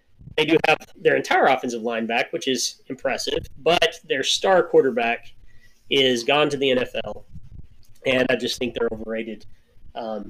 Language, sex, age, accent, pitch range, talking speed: English, male, 30-49, American, 120-180 Hz, 155 wpm